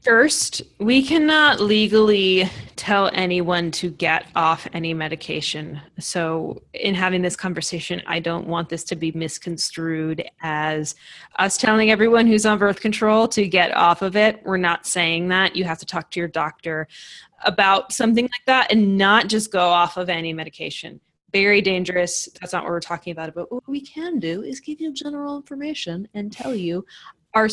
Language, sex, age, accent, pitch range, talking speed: English, female, 20-39, American, 170-215 Hz, 175 wpm